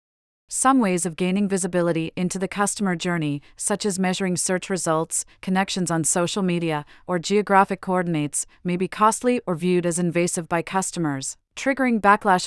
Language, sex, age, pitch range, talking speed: English, female, 30-49, 170-200 Hz, 155 wpm